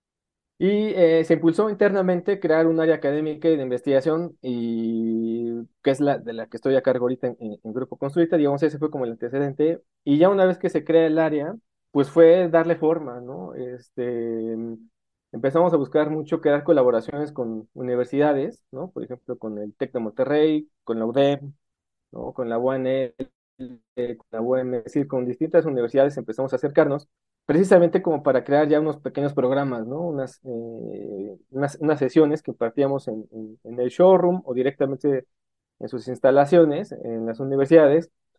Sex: male